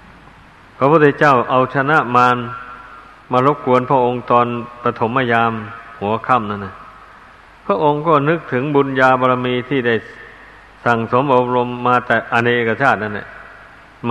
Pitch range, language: 115-130 Hz, Thai